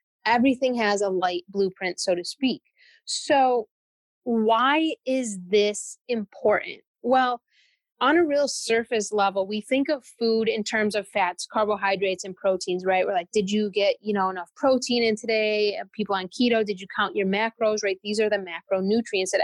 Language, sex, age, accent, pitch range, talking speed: English, female, 20-39, American, 195-245 Hz, 175 wpm